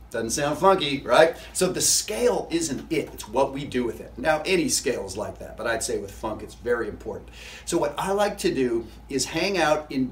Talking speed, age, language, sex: 230 wpm, 40-59, English, male